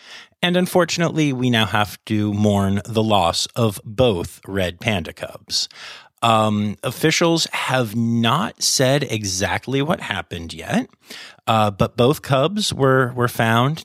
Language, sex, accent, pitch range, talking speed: English, male, American, 100-125 Hz, 130 wpm